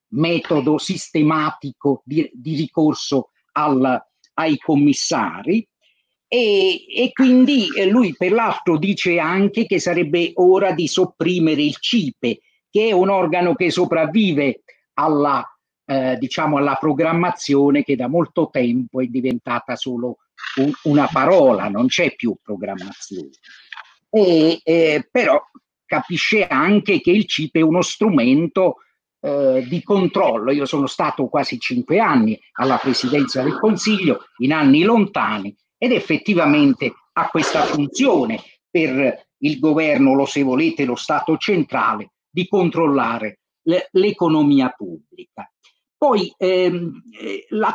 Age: 50-69